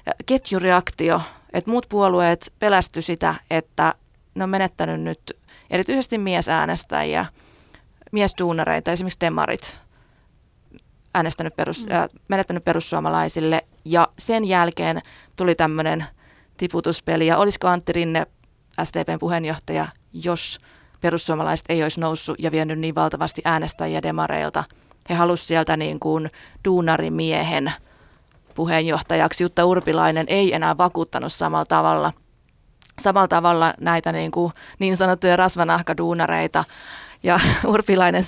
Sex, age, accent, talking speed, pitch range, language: female, 30-49, native, 105 wpm, 160-220 Hz, Finnish